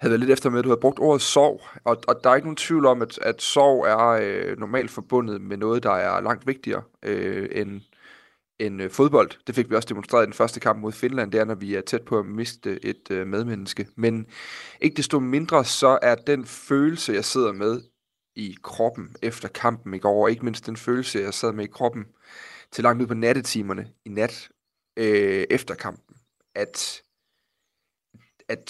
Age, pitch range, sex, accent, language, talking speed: 30-49, 110-130 Hz, male, native, Danish, 205 wpm